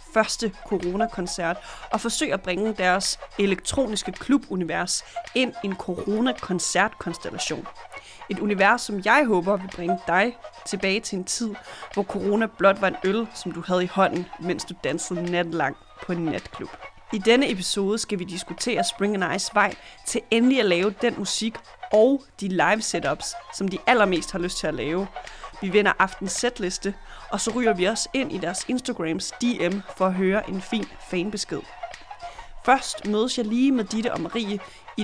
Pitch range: 185-230 Hz